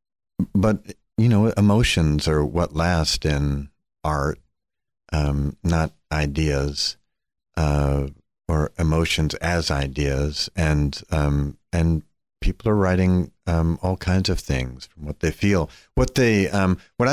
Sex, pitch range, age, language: male, 75-95 Hz, 50-69, English